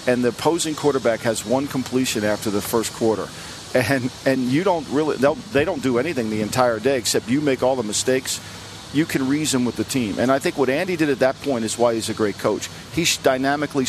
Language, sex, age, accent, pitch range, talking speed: English, male, 50-69, American, 115-150 Hz, 225 wpm